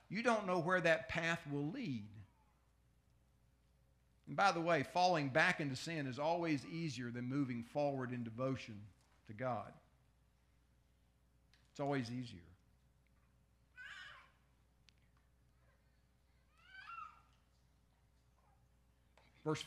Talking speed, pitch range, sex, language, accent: 90 wpm, 95-160 Hz, male, English, American